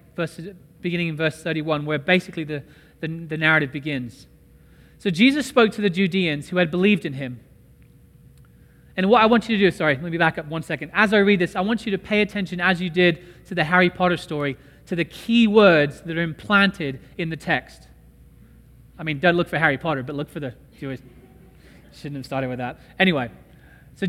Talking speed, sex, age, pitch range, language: 205 wpm, male, 30-49, 155-200 Hz, English